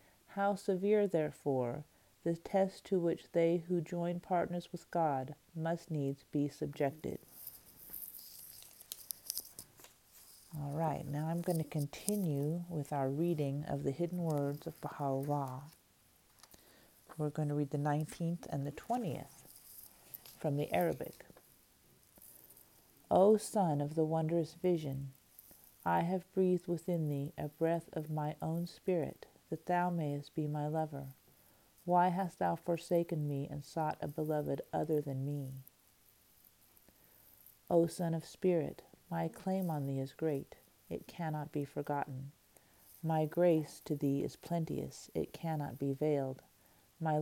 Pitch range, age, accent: 140-170 Hz, 40-59, American